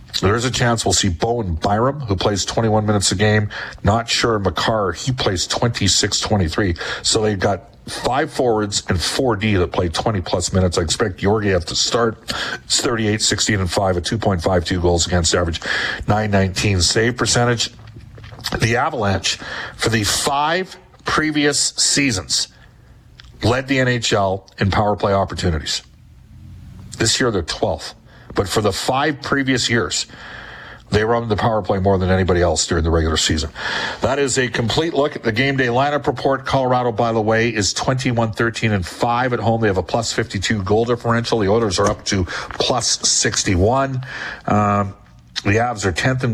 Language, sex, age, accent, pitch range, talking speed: English, male, 50-69, American, 95-120 Hz, 165 wpm